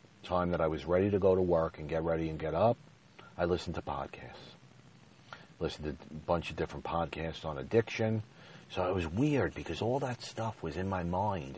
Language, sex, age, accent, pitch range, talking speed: English, male, 40-59, American, 75-95 Hz, 205 wpm